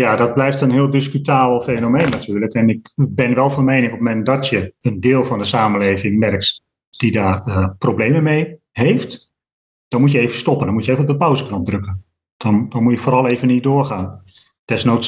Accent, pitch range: Dutch, 110-130 Hz